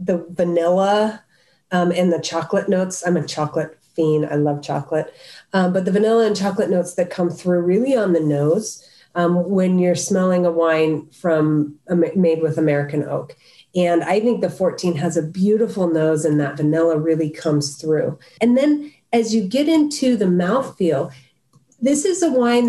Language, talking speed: English, 175 wpm